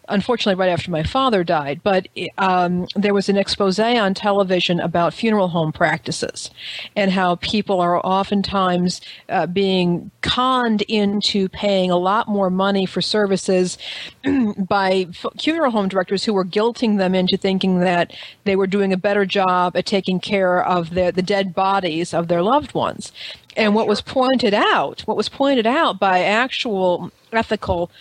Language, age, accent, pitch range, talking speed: English, 50-69, American, 180-210 Hz, 160 wpm